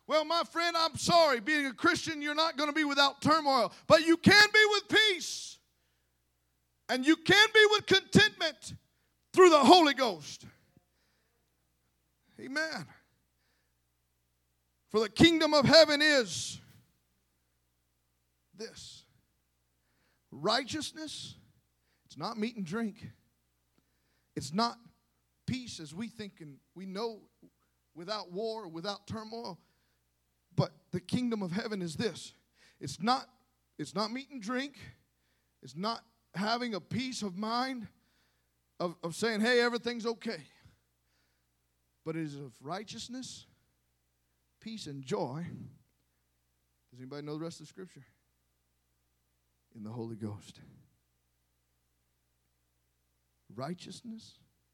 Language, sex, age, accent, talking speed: English, male, 40-59, American, 115 wpm